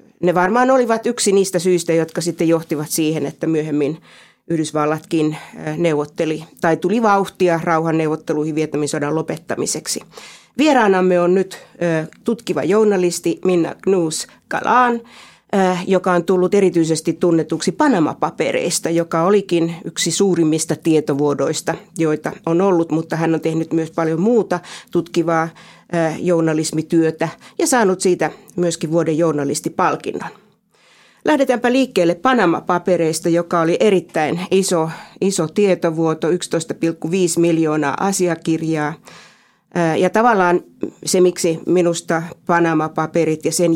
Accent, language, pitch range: native, Finnish, 160-185 Hz